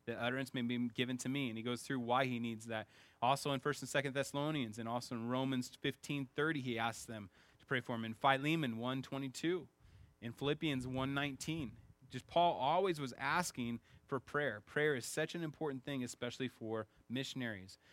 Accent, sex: American, male